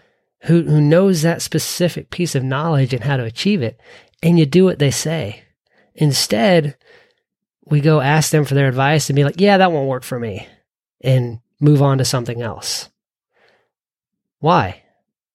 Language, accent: English, American